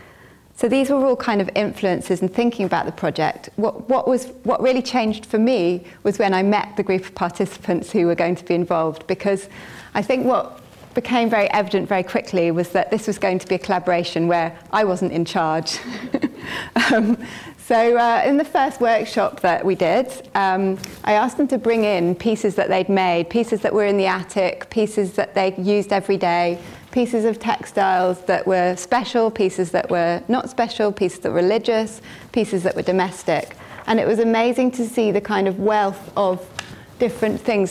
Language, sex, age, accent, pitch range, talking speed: English, female, 30-49, British, 180-230 Hz, 195 wpm